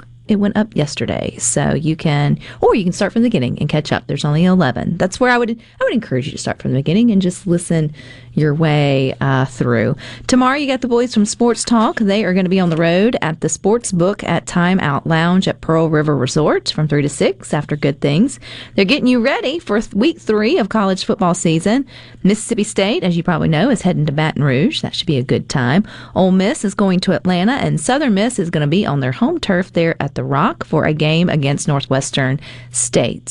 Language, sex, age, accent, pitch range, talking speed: English, female, 40-59, American, 145-205 Hz, 235 wpm